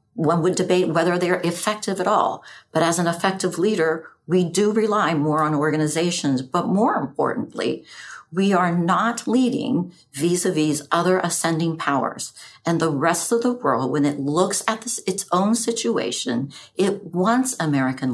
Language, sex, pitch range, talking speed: English, female, 150-200 Hz, 150 wpm